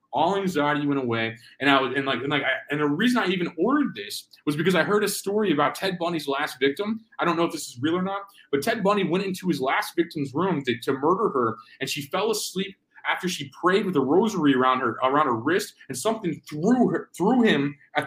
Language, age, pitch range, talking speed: English, 30-49, 135-185 Hz, 245 wpm